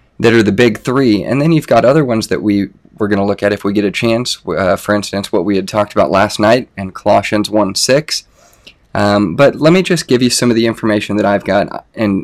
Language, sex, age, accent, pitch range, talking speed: English, male, 20-39, American, 100-115 Hz, 250 wpm